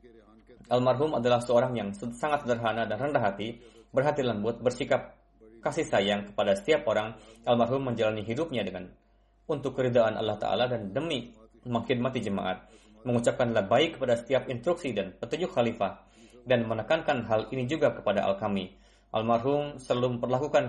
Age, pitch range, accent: 20-39, 110-125 Hz, native